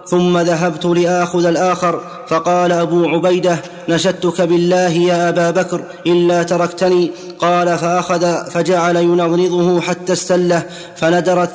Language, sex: Arabic, male